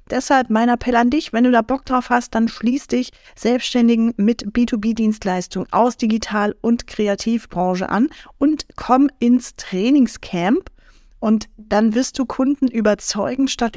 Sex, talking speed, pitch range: female, 145 wpm, 200-245 Hz